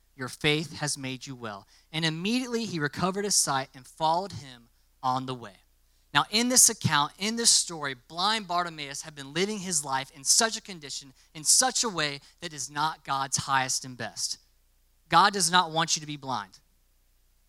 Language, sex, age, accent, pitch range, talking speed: English, male, 20-39, American, 120-190 Hz, 190 wpm